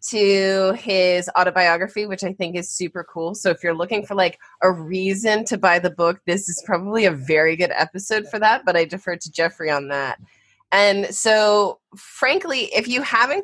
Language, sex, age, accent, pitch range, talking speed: English, female, 20-39, American, 180-225 Hz, 190 wpm